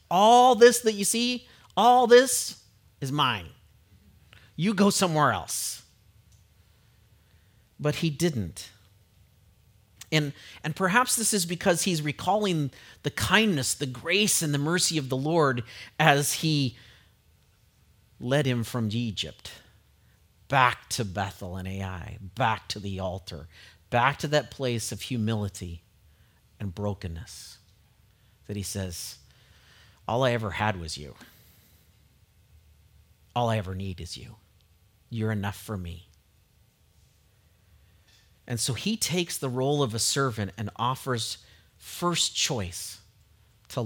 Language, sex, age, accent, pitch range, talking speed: English, male, 40-59, American, 100-150 Hz, 125 wpm